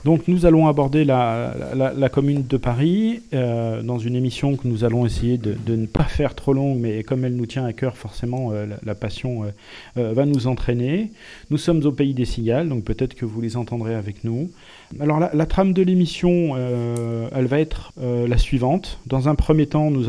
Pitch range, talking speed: 115-140 Hz, 220 wpm